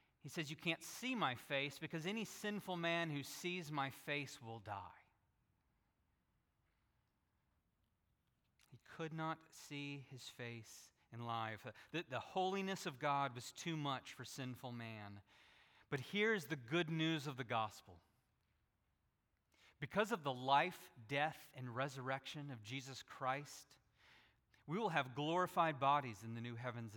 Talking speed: 140 wpm